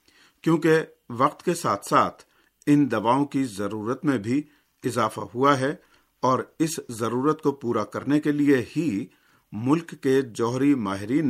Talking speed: 145 wpm